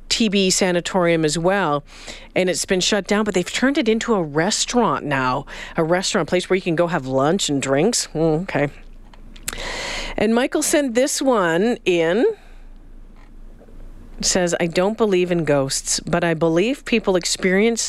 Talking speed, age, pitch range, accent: 160 wpm, 40-59, 165-210 Hz, American